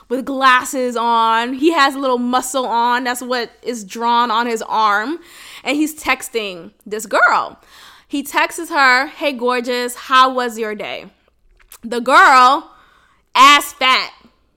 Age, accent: 10-29, American